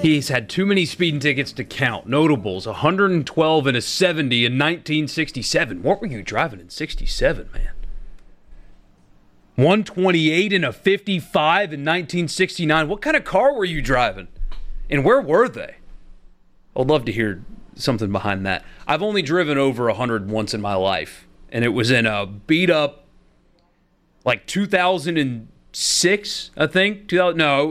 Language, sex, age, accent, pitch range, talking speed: English, male, 30-49, American, 115-165 Hz, 145 wpm